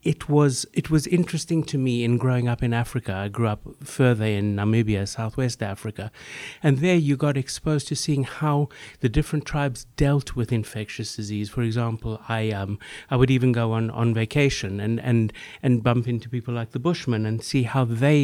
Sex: male